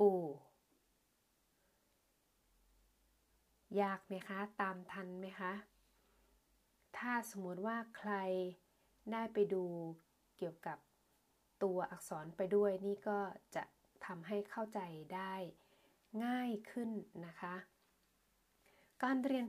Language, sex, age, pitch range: Thai, female, 20-39, 180-210 Hz